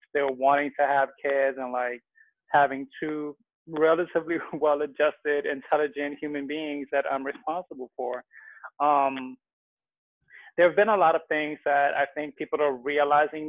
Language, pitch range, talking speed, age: English, 135-150 Hz, 150 wpm, 20-39